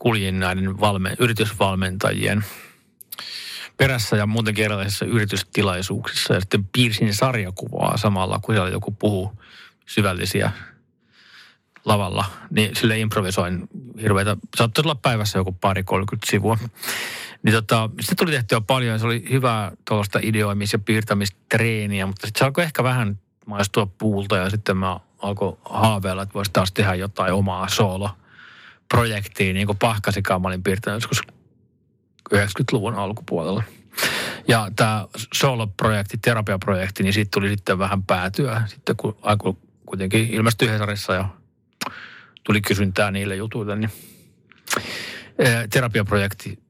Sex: male